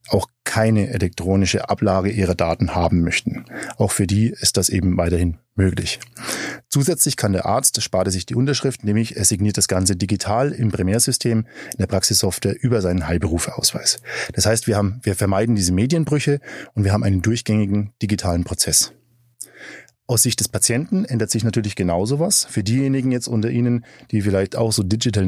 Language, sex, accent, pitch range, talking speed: German, male, German, 95-120 Hz, 175 wpm